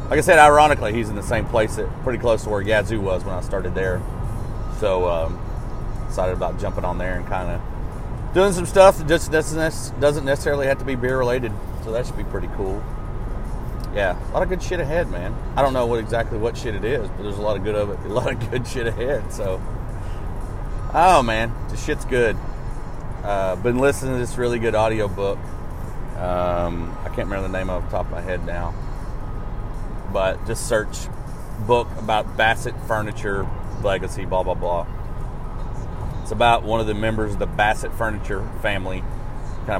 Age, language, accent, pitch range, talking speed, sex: 30-49, English, American, 95-120 Hz, 195 wpm, male